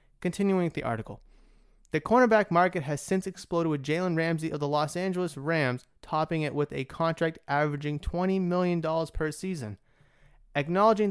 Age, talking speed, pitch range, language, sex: 30-49, 155 wpm, 135-175 Hz, English, male